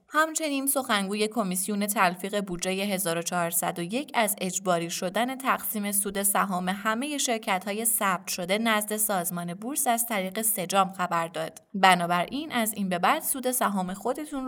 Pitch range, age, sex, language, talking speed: 185-245 Hz, 20-39, female, Persian, 135 wpm